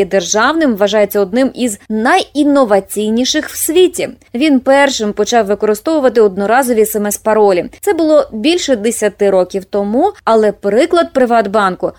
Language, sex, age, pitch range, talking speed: Ukrainian, female, 20-39, 200-275 Hz, 110 wpm